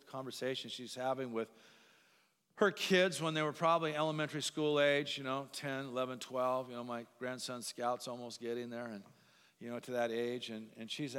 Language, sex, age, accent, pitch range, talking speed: English, male, 50-69, American, 120-155 Hz, 190 wpm